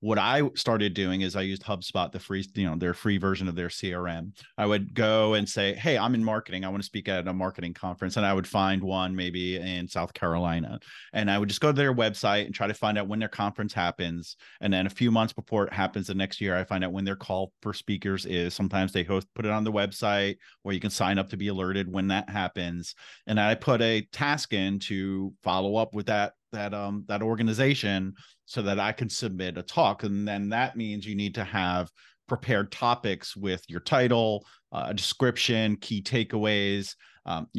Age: 30-49